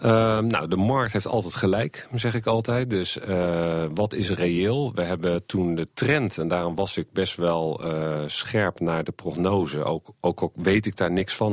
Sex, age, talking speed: male, 40-59, 205 wpm